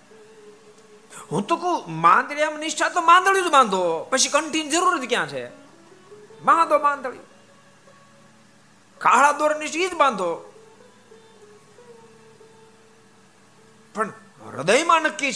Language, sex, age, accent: Gujarati, male, 50-69, native